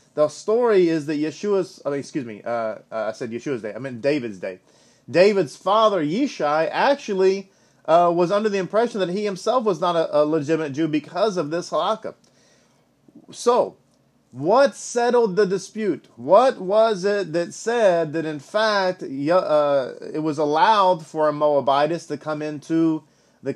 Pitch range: 155-210 Hz